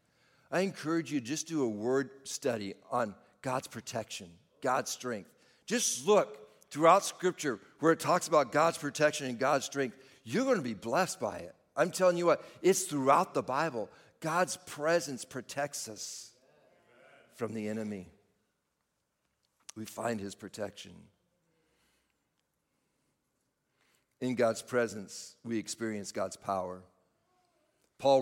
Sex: male